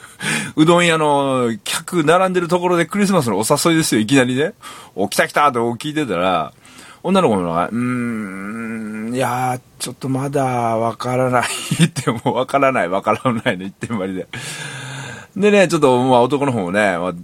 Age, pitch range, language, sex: 40-59, 110-155 Hz, Japanese, male